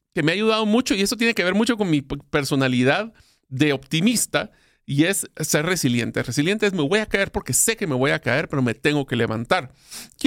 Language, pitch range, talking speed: Spanish, 135-195 Hz, 230 wpm